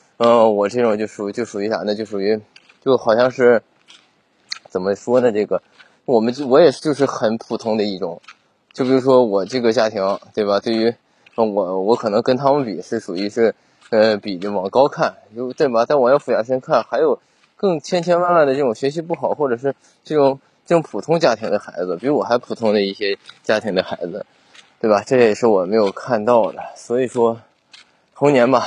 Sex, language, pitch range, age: male, Chinese, 105-130 Hz, 20-39